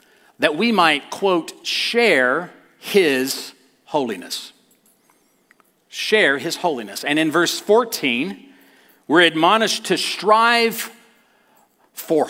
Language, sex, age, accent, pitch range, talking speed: English, male, 40-59, American, 135-215 Hz, 95 wpm